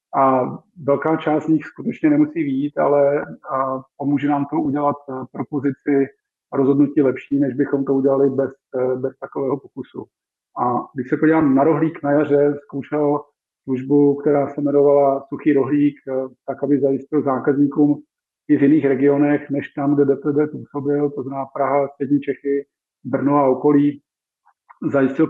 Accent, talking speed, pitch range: native, 145 wpm, 135-145 Hz